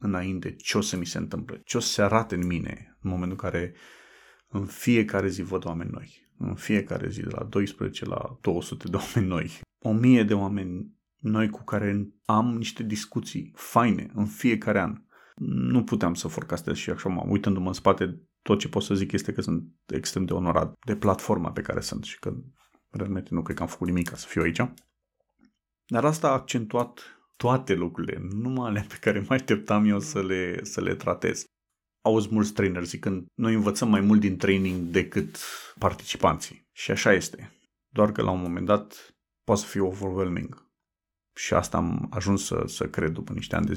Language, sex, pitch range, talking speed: Romanian, male, 90-110 Hz, 195 wpm